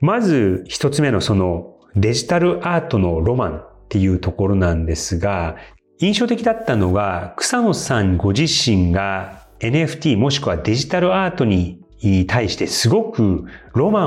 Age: 40-59